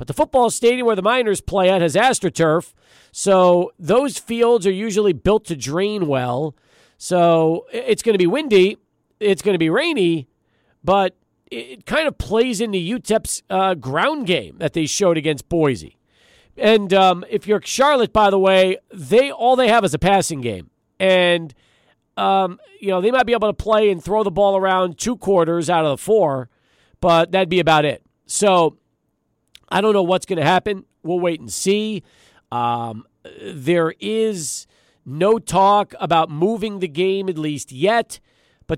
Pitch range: 145-195 Hz